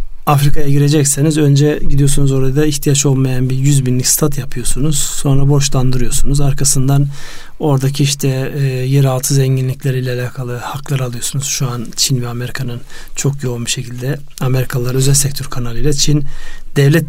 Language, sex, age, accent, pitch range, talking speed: Turkish, male, 40-59, native, 130-150 Hz, 135 wpm